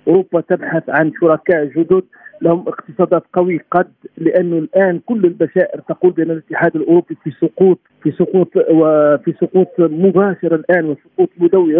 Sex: male